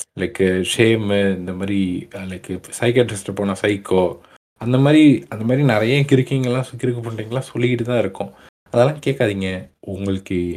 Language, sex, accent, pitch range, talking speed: Tamil, male, native, 100-130 Hz, 125 wpm